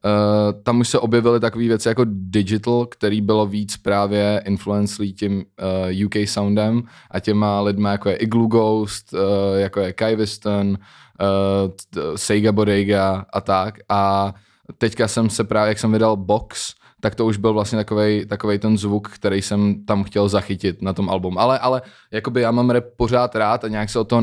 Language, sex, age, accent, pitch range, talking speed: Czech, male, 20-39, native, 100-110 Hz, 185 wpm